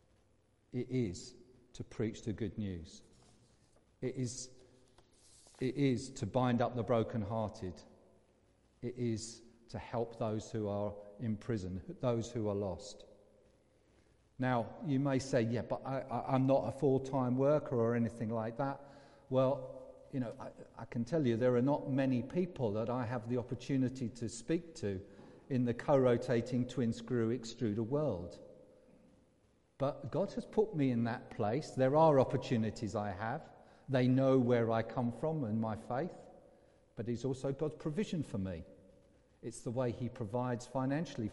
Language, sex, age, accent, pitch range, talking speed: English, male, 50-69, British, 110-135 Hz, 160 wpm